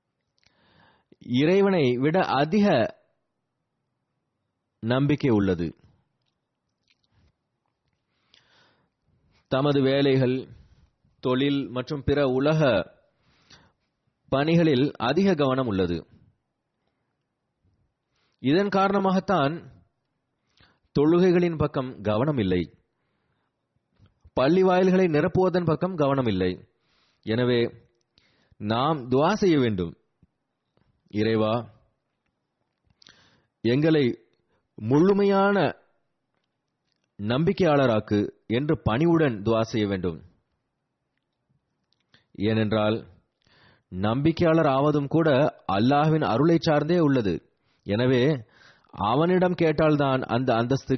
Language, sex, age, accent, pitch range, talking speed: Tamil, male, 30-49, native, 115-160 Hz, 60 wpm